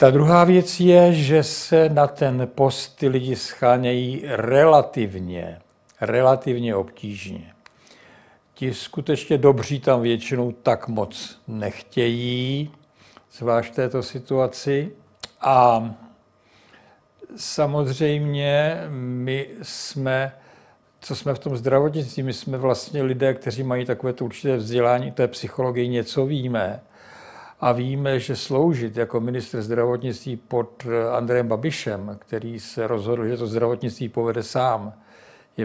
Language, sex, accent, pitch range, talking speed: Czech, male, native, 115-140 Hz, 115 wpm